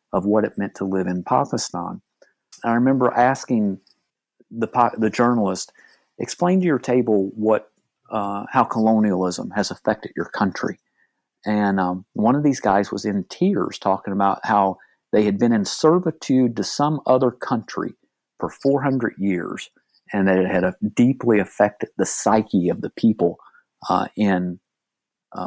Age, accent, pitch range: 50-69, American, 100-120 Hz